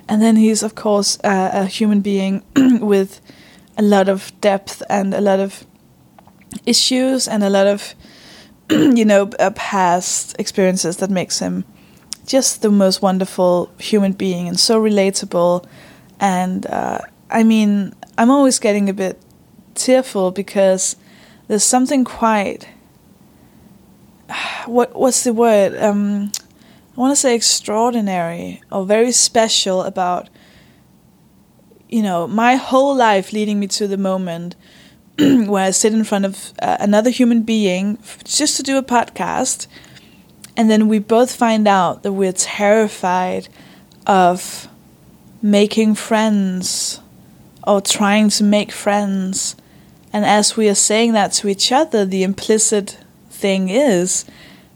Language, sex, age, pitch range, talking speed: English, female, 20-39, 195-225 Hz, 135 wpm